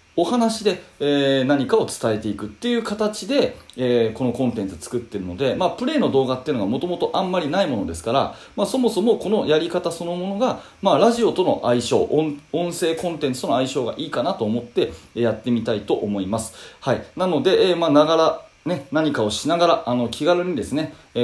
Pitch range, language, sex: 110-150 Hz, Japanese, male